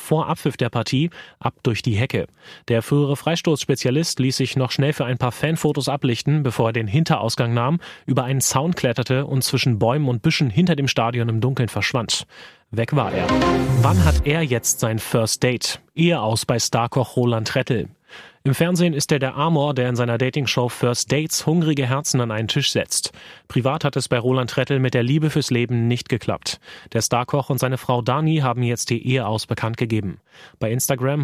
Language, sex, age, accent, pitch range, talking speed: German, male, 30-49, German, 120-145 Hz, 195 wpm